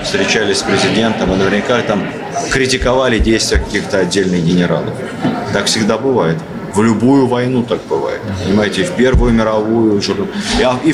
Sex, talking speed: male, 135 wpm